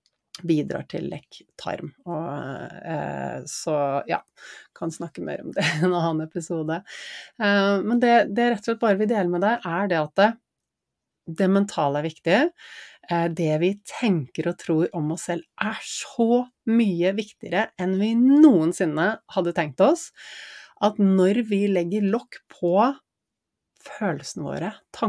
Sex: female